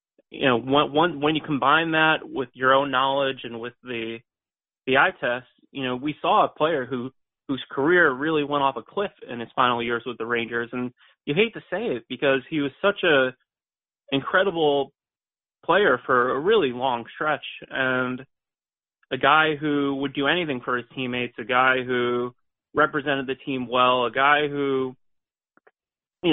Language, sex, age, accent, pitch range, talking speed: English, male, 30-49, American, 125-155 Hz, 175 wpm